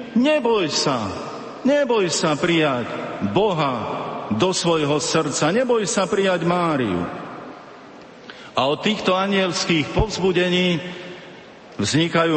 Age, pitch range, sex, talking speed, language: 50-69, 140-180 Hz, male, 90 wpm, Slovak